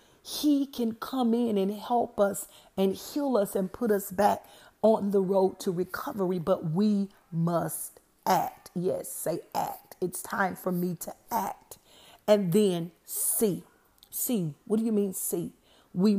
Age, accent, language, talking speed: 40-59, American, English, 155 wpm